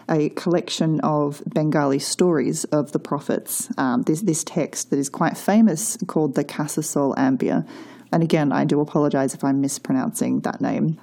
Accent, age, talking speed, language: Australian, 30-49, 165 wpm, English